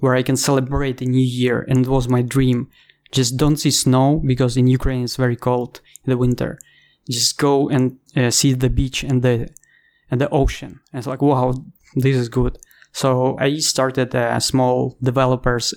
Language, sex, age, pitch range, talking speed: English, male, 20-39, 125-135 Hz, 190 wpm